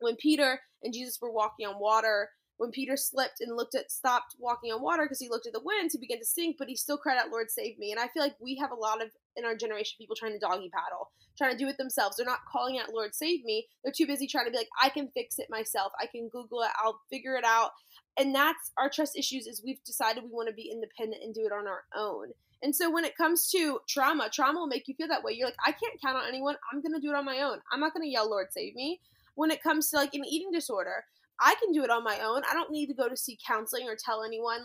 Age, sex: 20-39, female